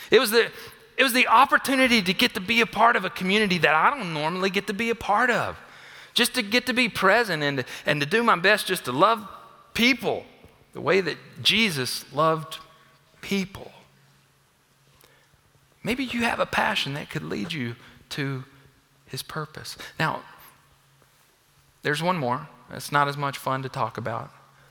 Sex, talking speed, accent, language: male, 175 wpm, American, English